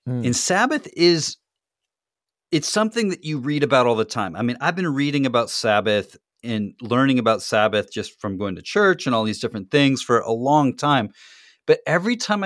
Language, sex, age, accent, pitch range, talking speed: English, male, 30-49, American, 110-145 Hz, 195 wpm